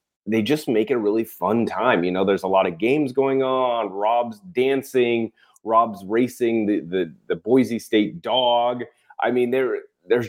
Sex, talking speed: male, 180 wpm